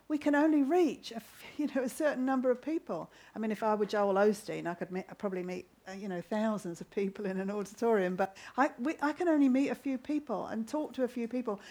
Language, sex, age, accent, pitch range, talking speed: English, female, 40-59, British, 195-270 Hz, 260 wpm